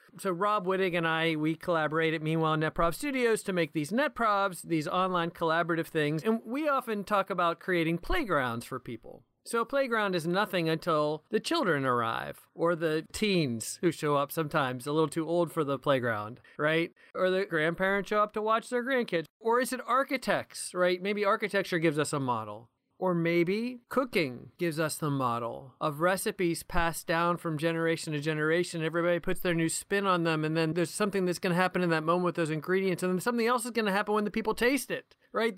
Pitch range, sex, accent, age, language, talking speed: 165-210 Hz, male, American, 40-59, English, 205 wpm